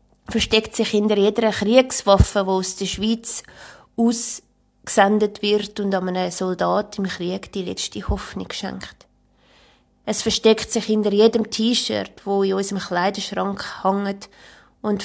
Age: 20-39